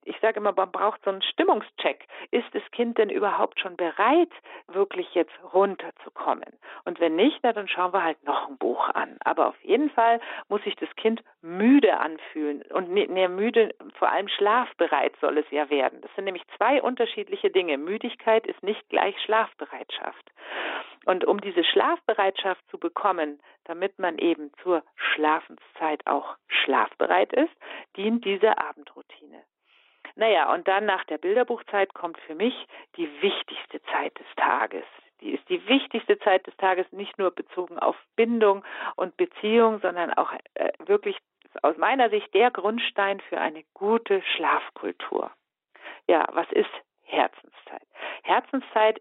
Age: 50-69